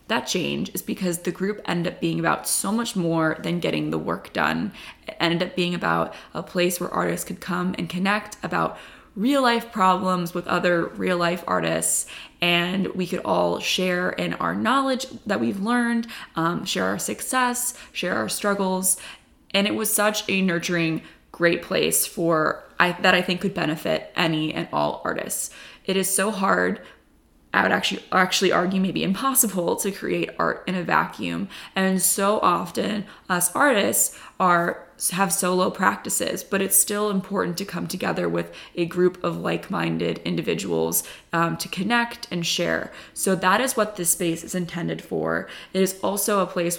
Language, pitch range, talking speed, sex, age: English, 170-195 Hz, 175 wpm, female, 20-39